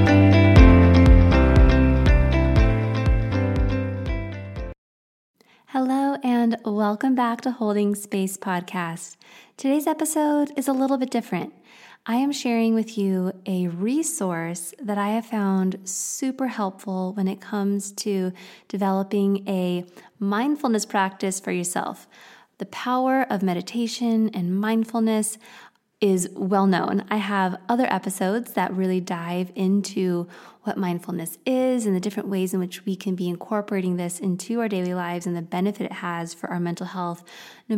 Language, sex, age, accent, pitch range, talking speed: English, female, 20-39, American, 175-220 Hz, 130 wpm